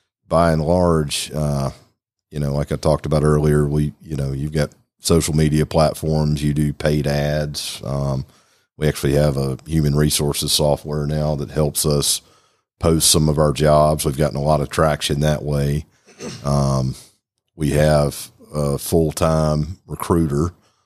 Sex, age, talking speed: male, 40-59, 155 wpm